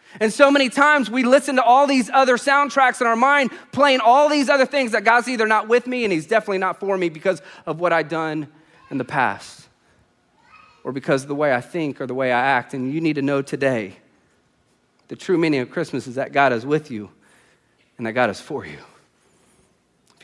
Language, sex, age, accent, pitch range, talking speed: English, male, 30-49, American, 135-190 Hz, 225 wpm